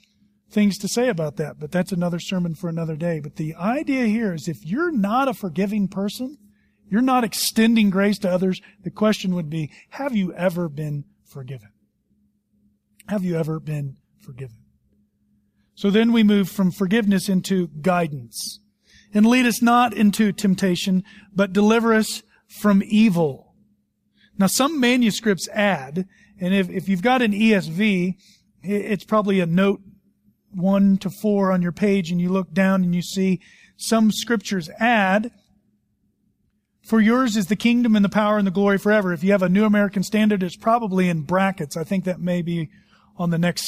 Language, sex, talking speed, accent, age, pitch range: English, male, 170 wpm, American, 40-59, 175-215 Hz